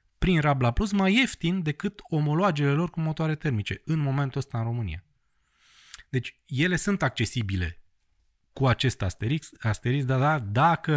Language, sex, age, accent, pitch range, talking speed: Romanian, male, 20-39, native, 110-145 Hz, 150 wpm